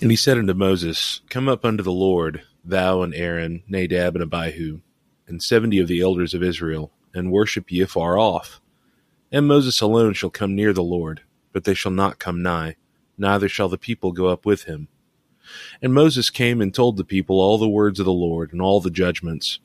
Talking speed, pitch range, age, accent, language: 205 wpm, 90-110 Hz, 30-49, American, English